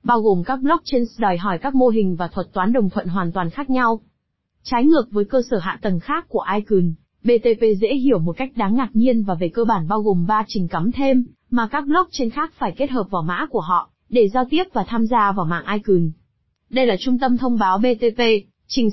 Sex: female